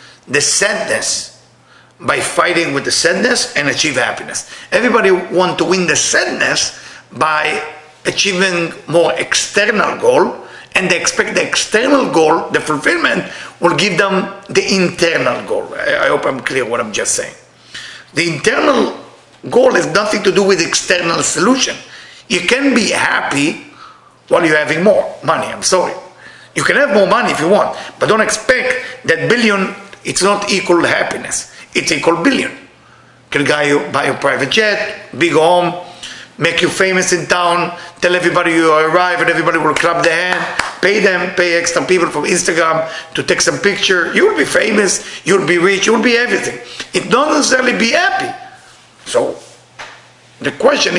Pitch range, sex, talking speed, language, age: 165-215 Hz, male, 160 wpm, English, 50-69